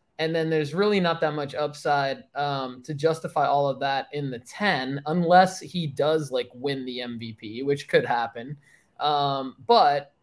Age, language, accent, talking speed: 20-39, English, American, 170 wpm